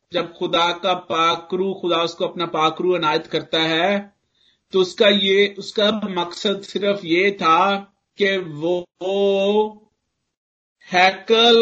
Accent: native